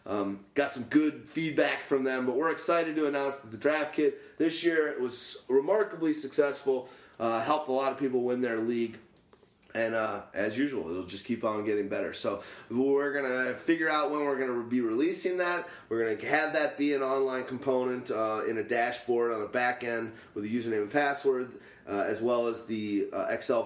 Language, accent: English, American